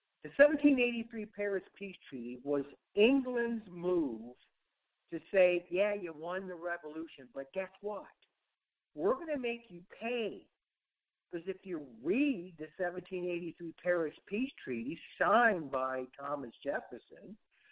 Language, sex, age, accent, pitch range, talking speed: English, male, 60-79, American, 160-235 Hz, 125 wpm